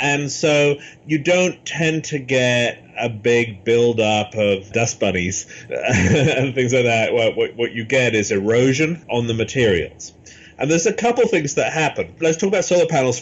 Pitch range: 115-150 Hz